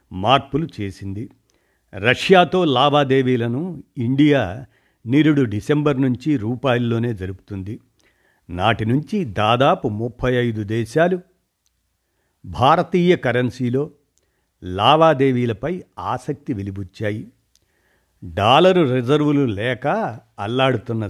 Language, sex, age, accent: Telugu, male, 60-79, native